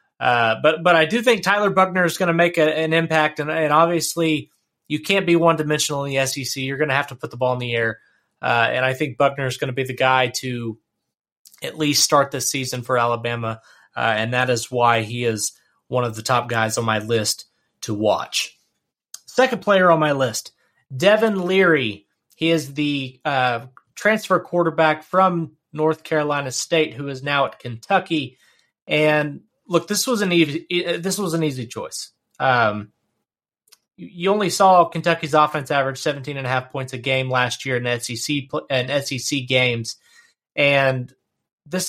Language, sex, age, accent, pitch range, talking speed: English, male, 30-49, American, 130-165 Hz, 185 wpm